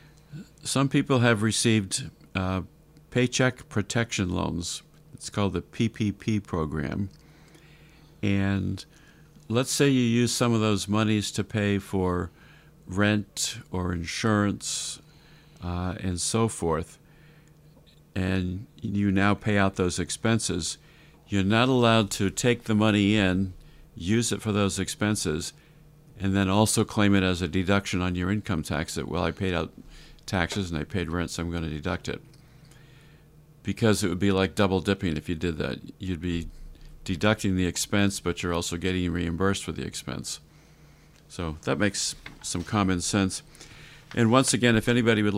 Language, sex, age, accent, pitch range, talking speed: English, male, 50-69, American, 90-135 Hz, 155 wpm